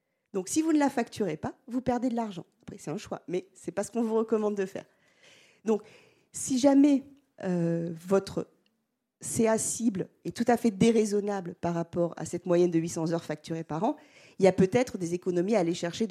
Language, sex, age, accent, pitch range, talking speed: French, female, 40-59, French, 175-245 Hz, 210 wpm